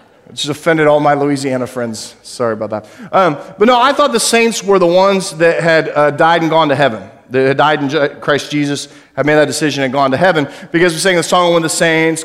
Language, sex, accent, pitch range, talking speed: English, male, American, 150-200 Hz, 245 wpm